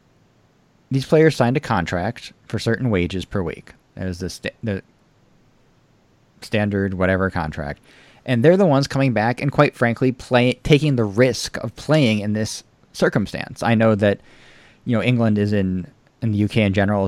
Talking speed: 170 wpm